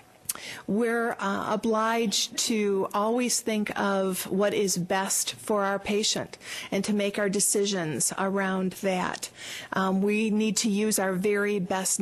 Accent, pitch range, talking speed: American, 185-220 Hz, 140 wpm